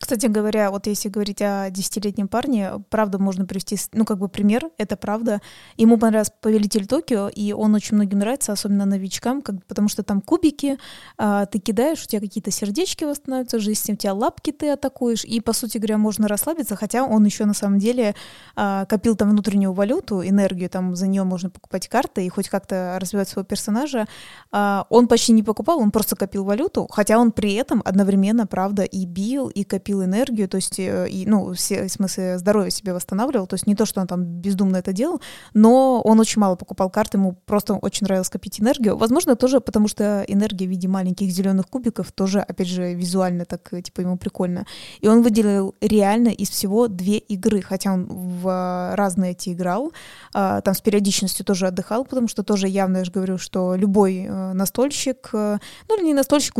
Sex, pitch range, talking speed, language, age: female, 190-225 Hz, 190 wpm, Russian, 20-39